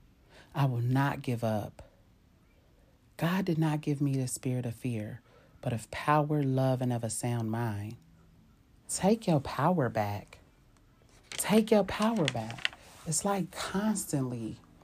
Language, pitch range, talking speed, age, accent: English, 110-140 Hz, 140 wpm, 40-59, American